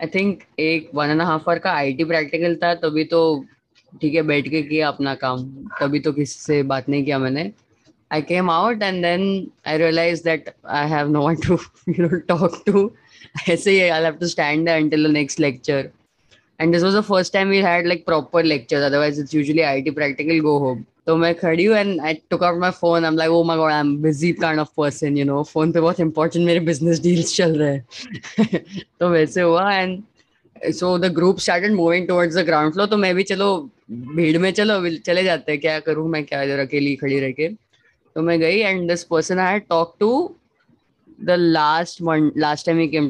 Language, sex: English, female